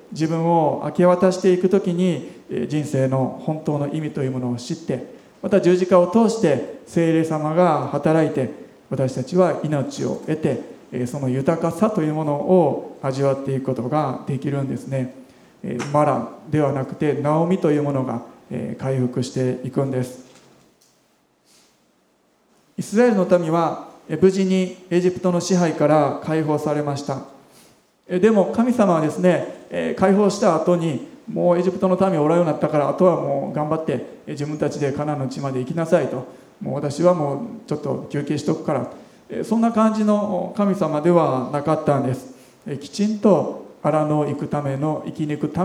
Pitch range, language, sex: 140-180 Hz, Japanese, male